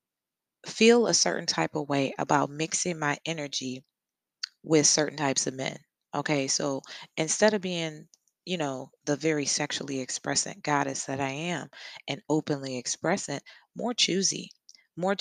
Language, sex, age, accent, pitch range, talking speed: English, female, 20-39, American, 140-175 Hz, 140 wpm